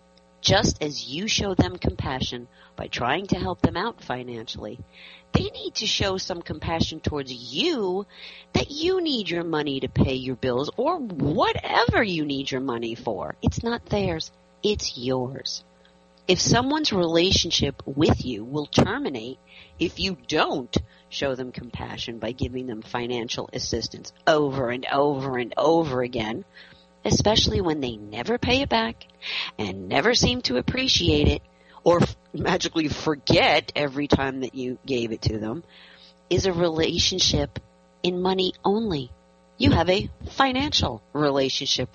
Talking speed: 145 wpm